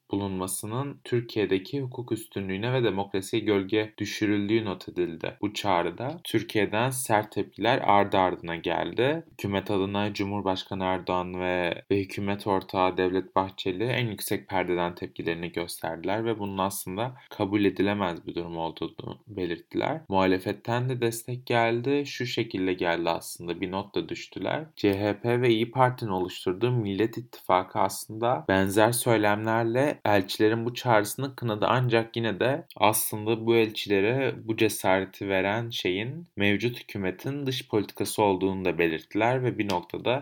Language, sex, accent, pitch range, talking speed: Turkish, male, native, 95-115 Hz, 130 wpm